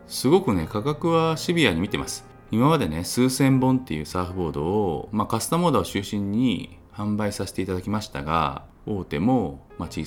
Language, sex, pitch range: Japanese, male, 80-120 Hz